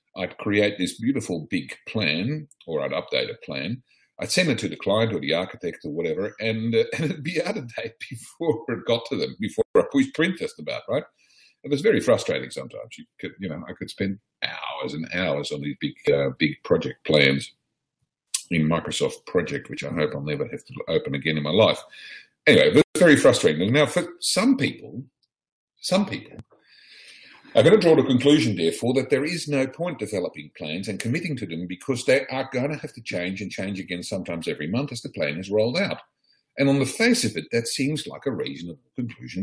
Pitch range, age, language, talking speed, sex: 95-145 Hz, 50-69, English, 215 wpm, male